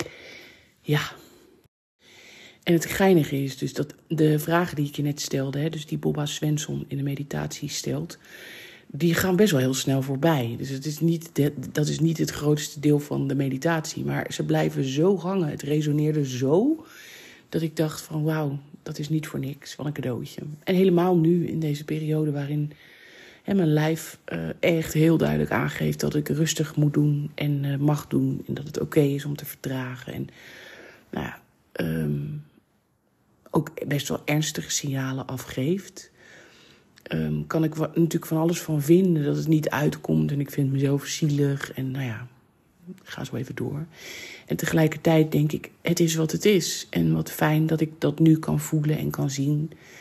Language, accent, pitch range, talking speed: Dutch, Dutch, 140-160 Hz, 175 wpm